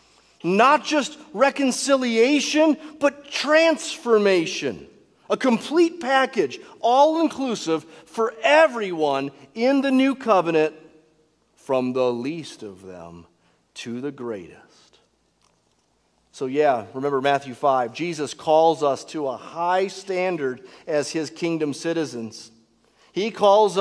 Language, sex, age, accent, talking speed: English, male, 40-59, American, 105 wpm